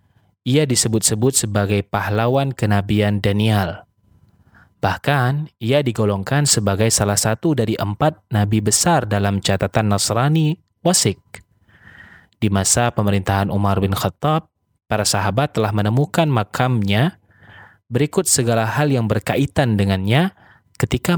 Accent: native